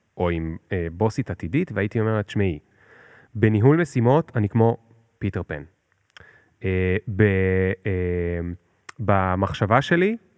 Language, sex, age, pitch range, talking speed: Hebrew, male, 30-49, 95-120 Hz, 110 wpm